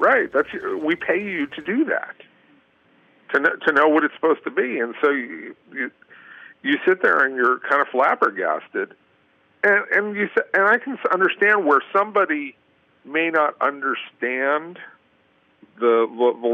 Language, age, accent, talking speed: English, 50-69, American, 160 wpm